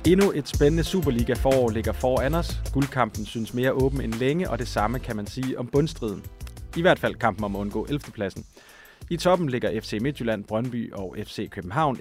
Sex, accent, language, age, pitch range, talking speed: male, native, Danish, 30-49, 110-150 Hz, 200 wpm